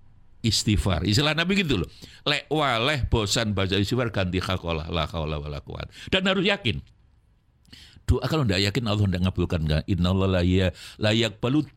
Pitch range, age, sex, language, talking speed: 100-155 Hz, 60-79, male, Indonesian, 155 wpm